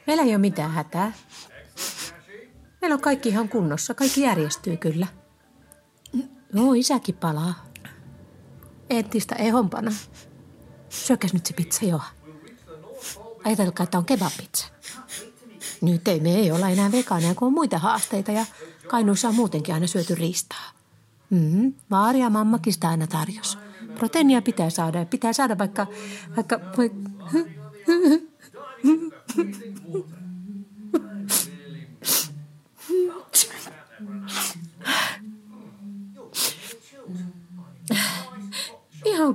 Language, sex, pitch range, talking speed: Finnish, female, 175-235 Hz, 90 wpm